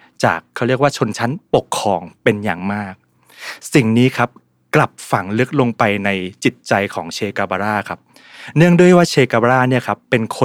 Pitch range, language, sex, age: 105-140 Hz, Thai, male, 20-39